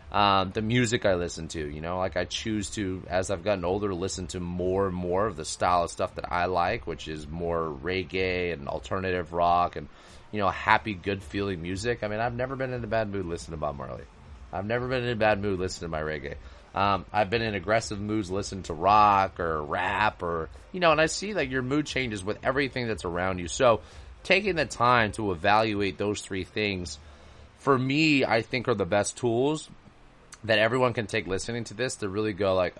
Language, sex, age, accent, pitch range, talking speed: English, male, 30-49, American, 85-110 Hz, 220 wpm